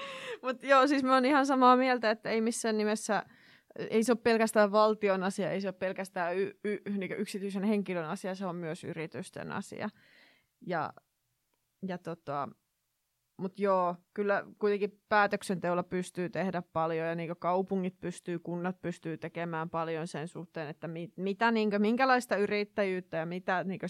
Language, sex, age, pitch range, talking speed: Finnish, female, 20-39, 175-235 Hz, 155 wpm